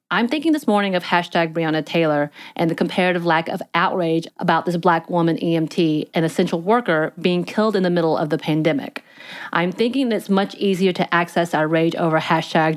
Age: 30-49